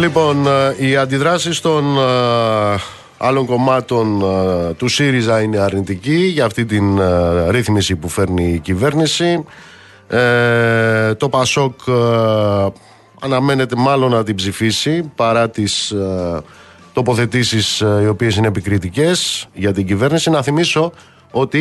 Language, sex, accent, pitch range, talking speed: Greek, male, native, 100-145 Hz, 125 wpm